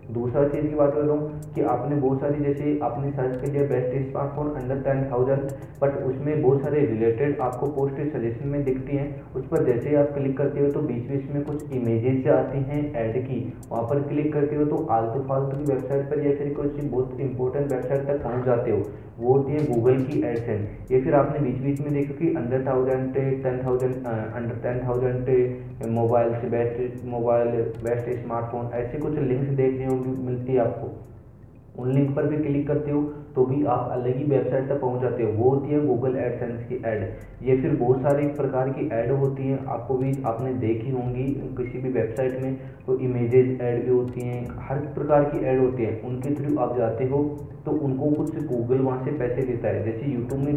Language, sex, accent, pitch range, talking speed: Hindi, male, native, 125-140 Hz, 130 wpm